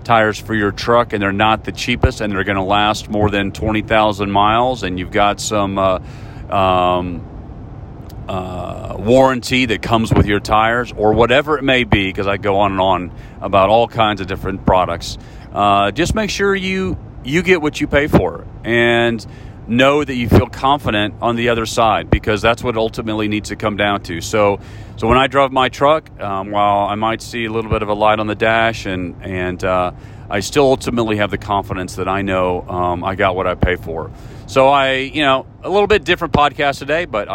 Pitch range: 100-130 Hz